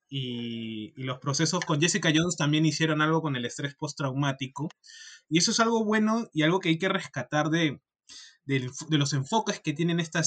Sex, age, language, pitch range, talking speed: male, 20-39, Spanish, 140-170 Hz, 180 wpm